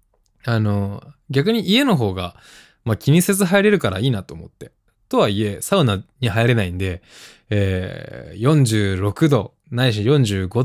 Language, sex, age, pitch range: Japanese, male, 20-39, 105-155 Hz